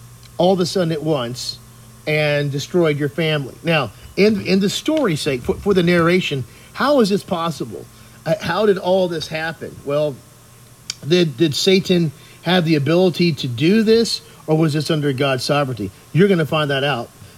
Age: 40-59